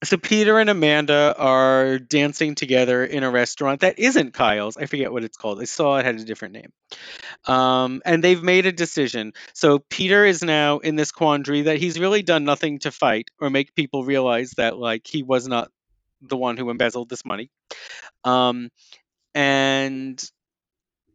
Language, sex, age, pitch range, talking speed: English, male, 30-49, 130-160 Hz, 175 wpm